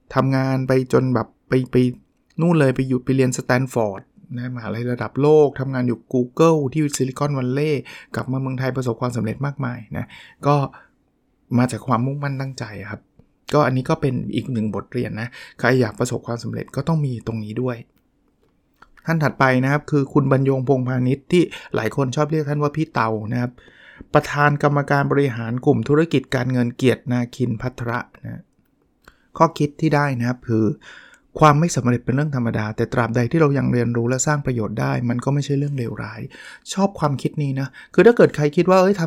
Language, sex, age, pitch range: Thai, male, 20-39, 120-150 Hz